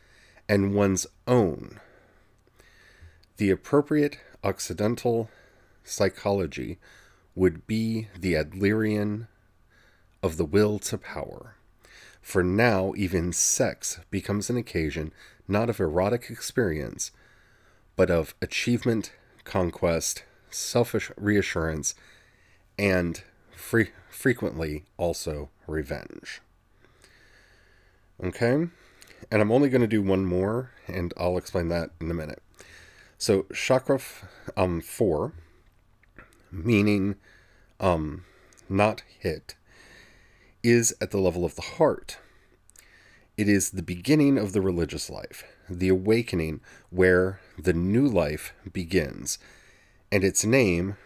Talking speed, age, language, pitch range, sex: 100 wpm, 40-59, English, 90-105 Hz, male